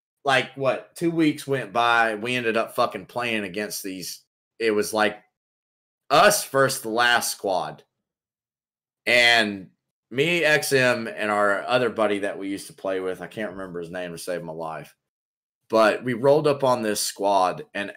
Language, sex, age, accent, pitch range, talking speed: English, male, 30-49, American, 105-135 Hz, 170 wpm